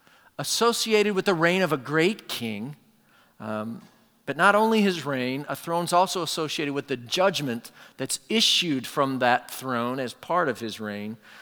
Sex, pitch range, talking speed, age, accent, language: male, 120-165 Hz, 165 wpm, 40-59, American, English